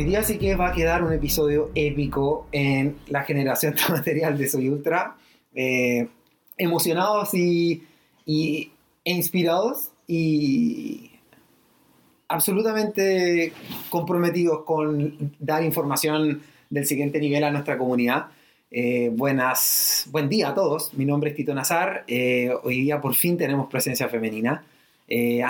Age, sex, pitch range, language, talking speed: 30-49, male, 135-165 Hz, Spanish, 130 wpm